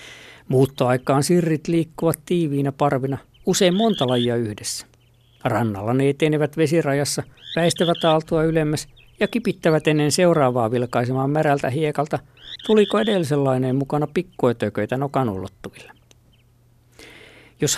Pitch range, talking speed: 120-160 Hz, 100 wpm